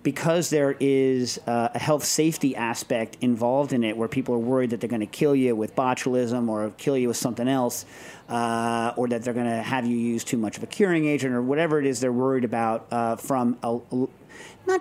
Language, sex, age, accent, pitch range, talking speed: English, male, 40-59, American, 120-140 Hz, 220 wpm